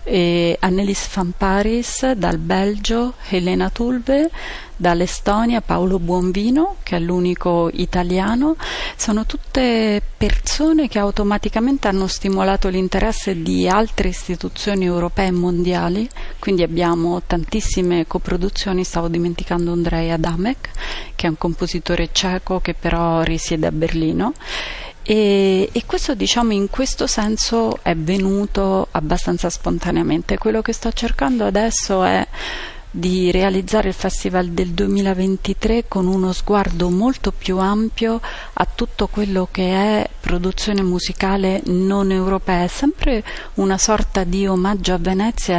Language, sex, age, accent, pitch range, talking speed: Italian, female, 30-49, native, 180-215 Hz, 120 wpm